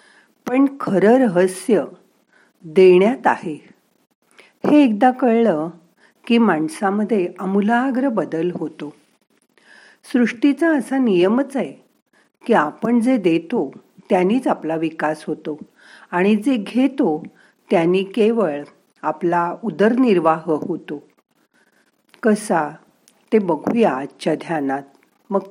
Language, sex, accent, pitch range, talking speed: Marathi, female, native, 160-240 Hz, 95 wpm